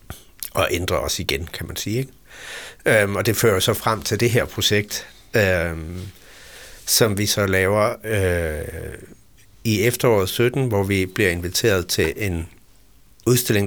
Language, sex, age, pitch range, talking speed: Danish, male, 60-79, 90-110 Hz, 130 wpm